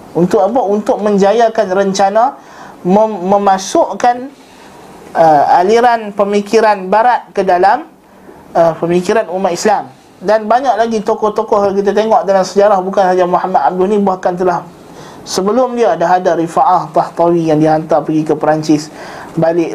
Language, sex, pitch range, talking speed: Malay, male, 170-220 Hz, 135 wpm